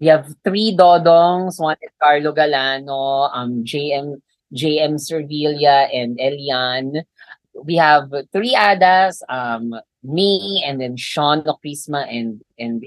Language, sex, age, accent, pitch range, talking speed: Filipino, female, 20-39, native, 135-170 Hz, 120 wpm